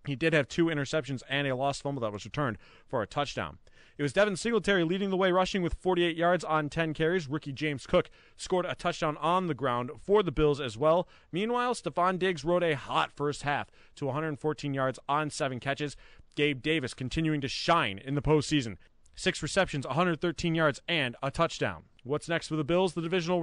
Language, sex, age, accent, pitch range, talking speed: English, male, 30-49, American, 135-175 Hz, 200 wpm